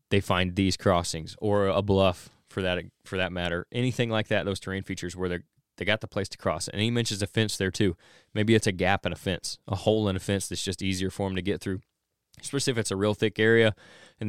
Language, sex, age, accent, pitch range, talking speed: English, male, 20-39, American, 100-120 Hz, 250 wpm